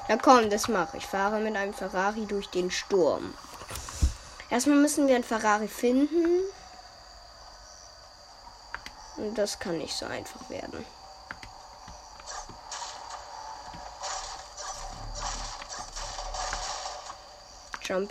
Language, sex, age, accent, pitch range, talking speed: German, female, 10-29, German, 195-250 Hz, 85 wpm